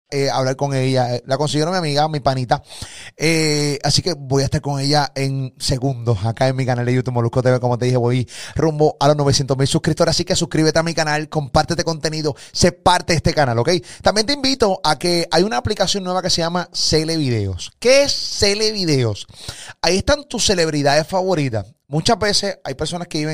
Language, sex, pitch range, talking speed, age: Spanish, male, 135-170 Hz, 210 wpm, 30-49